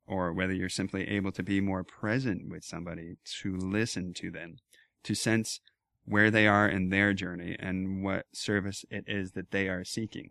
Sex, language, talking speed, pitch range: male, English, 185 wpm, 95-120 Hz